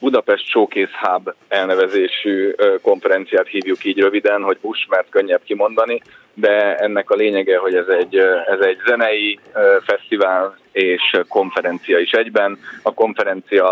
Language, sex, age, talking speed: Hungarian, male, 30-49, 130 wpm